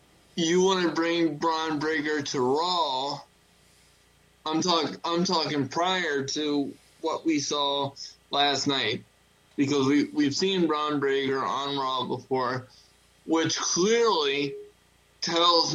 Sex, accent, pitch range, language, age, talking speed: male, American, 135-165 Hz, English, 20-39, 120 wpm